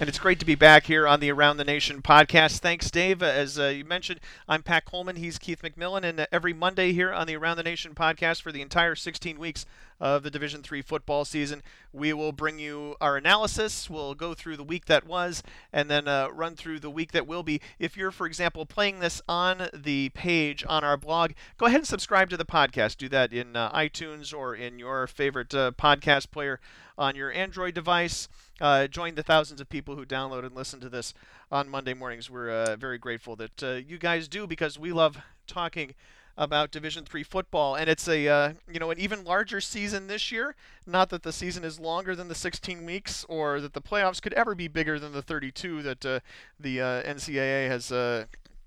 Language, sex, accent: English, male, American